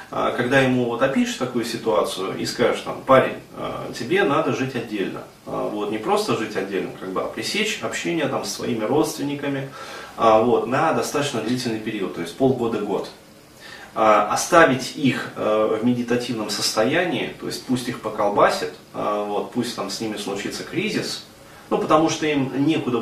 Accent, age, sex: native, 30-49, male